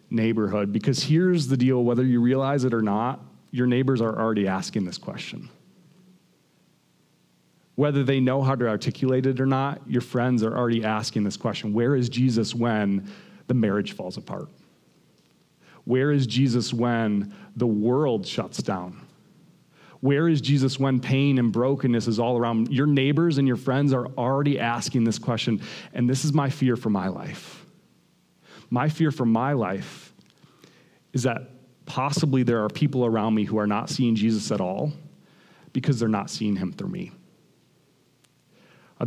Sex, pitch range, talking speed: male, 115-135 Hz, 165 wpm